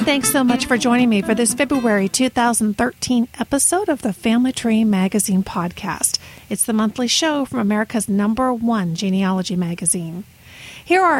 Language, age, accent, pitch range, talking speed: English, 50-69, American, 195-250 Hz, 155 wpm